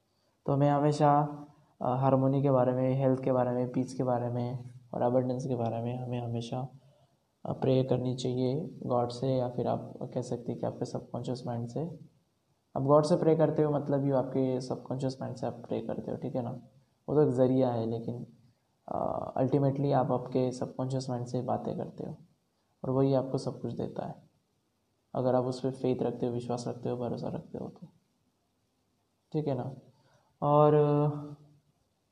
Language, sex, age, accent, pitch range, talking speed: Hindi, male, 20-39, native, 125-140 Hz, 180 wpm